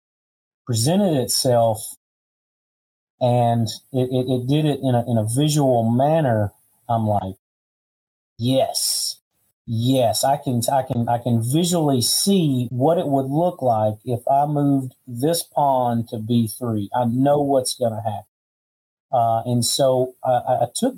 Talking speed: 145 wpm